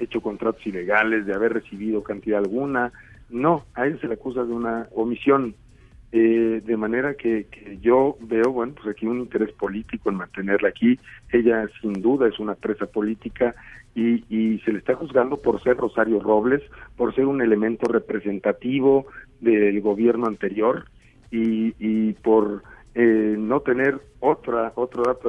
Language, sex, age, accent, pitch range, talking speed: Spanish, male, 40-59, Mexican, 105-120 Hz, 160 wpm